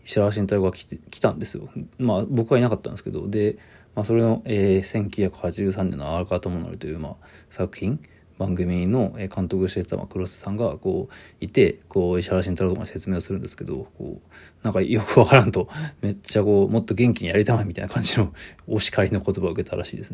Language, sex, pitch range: Japanese, male, 95-110 Hz